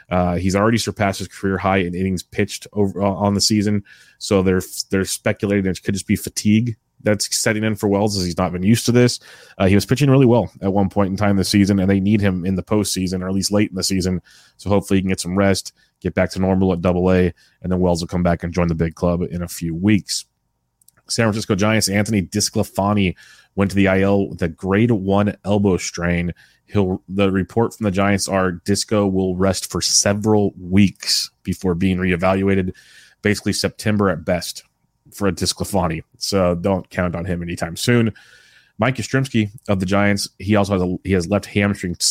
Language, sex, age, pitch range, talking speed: English, male, 30-49, 90-105 Hz, 215 wpm